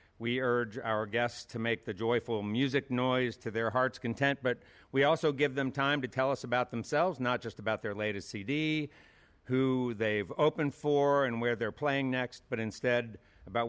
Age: 50-69